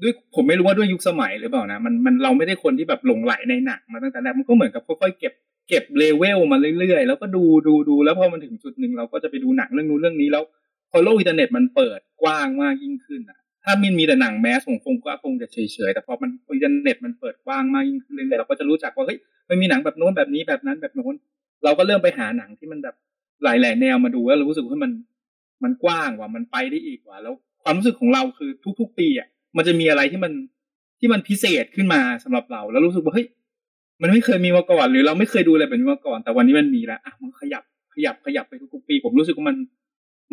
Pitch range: 230-270 Hz